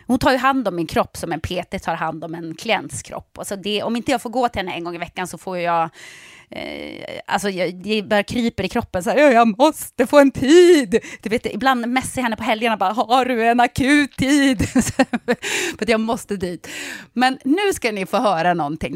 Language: Swedish